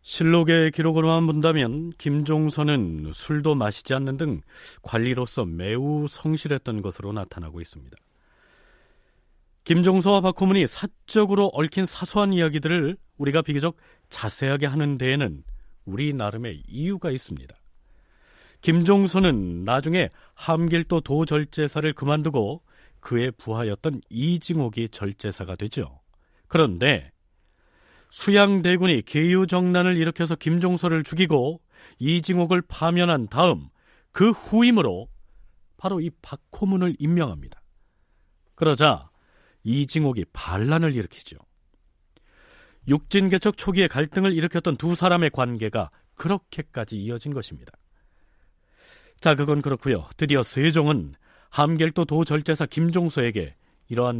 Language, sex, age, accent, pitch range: Korean, male, 40-59, native, 110-170 Hz